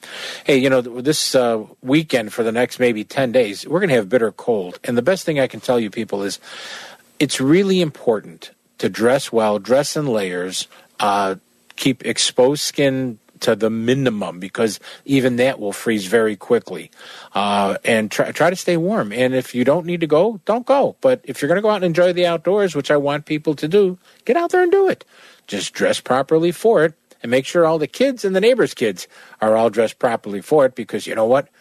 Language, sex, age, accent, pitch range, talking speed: English, male, 40-59, American, 115-165 Hz, 215 wpm